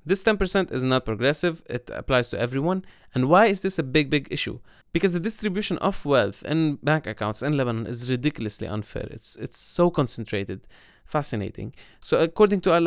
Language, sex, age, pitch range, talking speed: English, male, 20-39, 115-160 Hz, 180 wpm